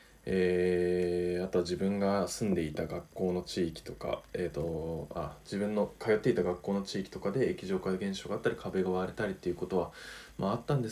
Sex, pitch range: male, 80-100 Hz